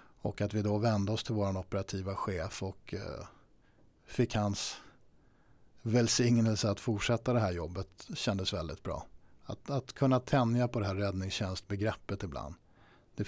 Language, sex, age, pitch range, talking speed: Swedish, male, 50-69, 100-120 Hz, 145 wpm